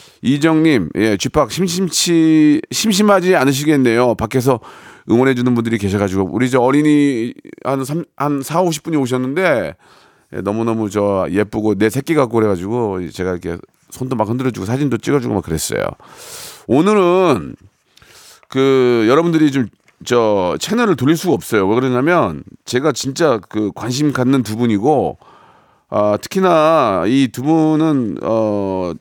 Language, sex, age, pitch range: Korean, male, 40-59, 105-155 Hz